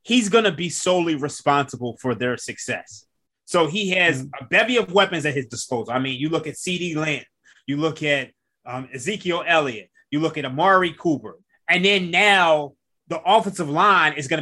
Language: English